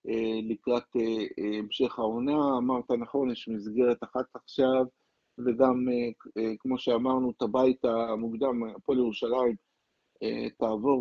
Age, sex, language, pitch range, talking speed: 50-69, male, Hebrew, 115-135 Hz, 100 wpm